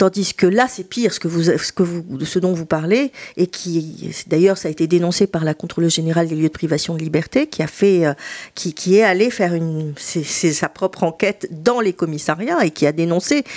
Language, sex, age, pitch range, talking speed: French, female, 50-69, 170-230 Hz, 240 wpm